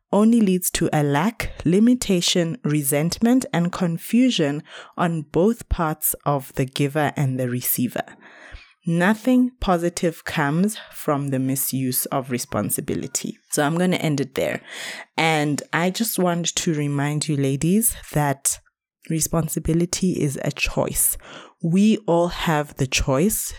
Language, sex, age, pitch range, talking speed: English, female, 20-39, 135-170 Hz, 130 wpm